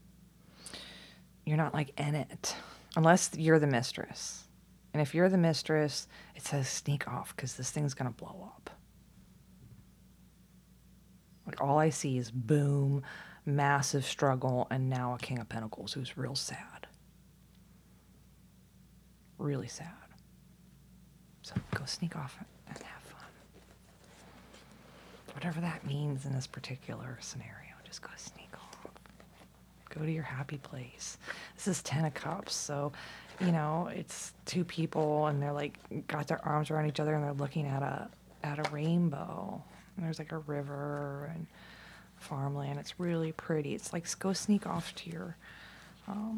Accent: American